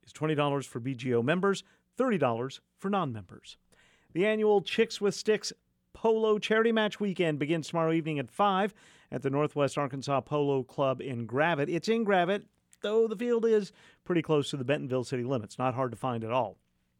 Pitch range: 130-175 Hz